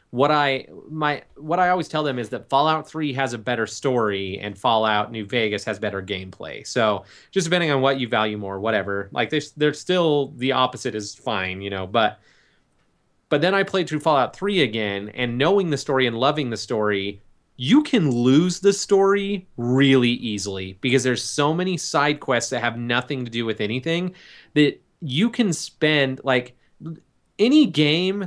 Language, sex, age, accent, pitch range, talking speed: English, male, 30-49, American, 110-150 Hz, 185 wpm